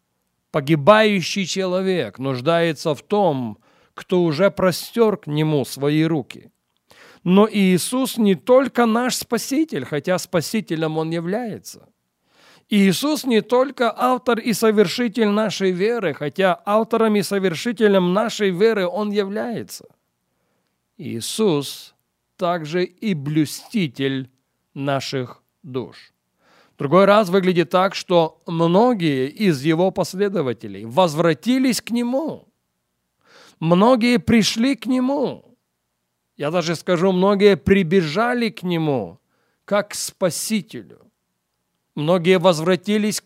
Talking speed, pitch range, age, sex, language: 100 wpm, 145-215 Hz, 40-59, male, English